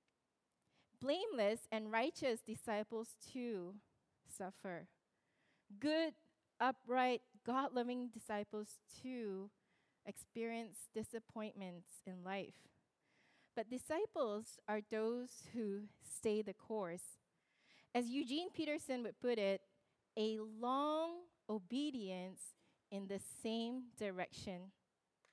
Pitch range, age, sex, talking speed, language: 210-275 Hz, 20-39, female, 85 wpm, English